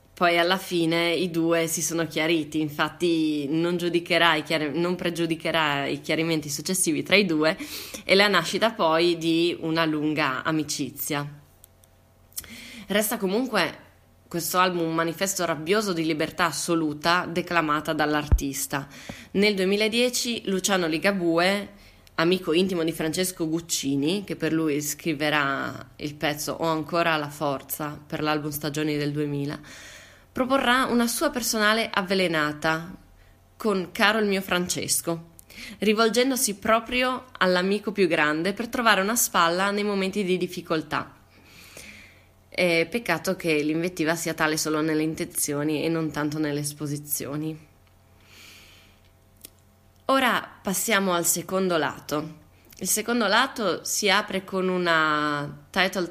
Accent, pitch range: native, 150-185 Hz